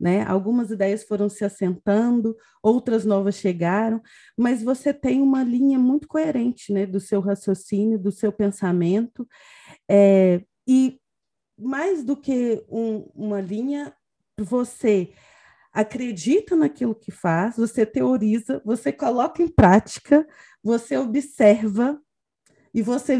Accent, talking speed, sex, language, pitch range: Brazilian, 115 wpm, female, Portuguese, 200-255 Hz